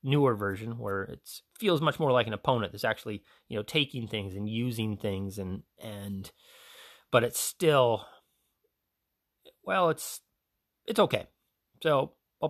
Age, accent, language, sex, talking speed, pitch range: 30-49, American, English, male, 145 wpm, 105-150 Hz